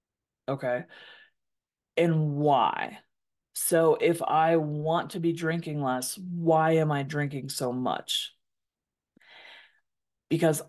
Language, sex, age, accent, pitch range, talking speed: English, female, 20-39, American, 145-175 Hz, 100 wpm